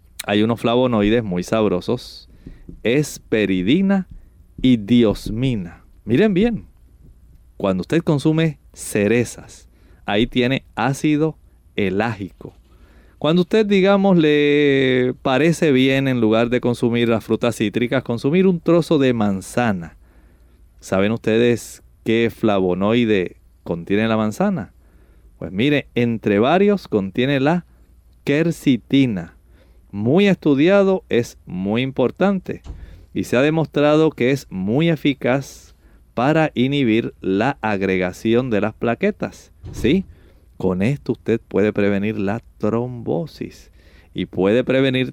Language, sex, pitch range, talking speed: Spanish, male, 95-140 Hz, 110 wpm